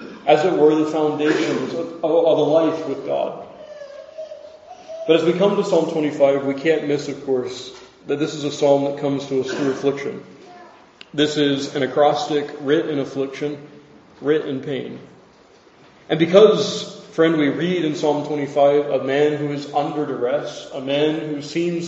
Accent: American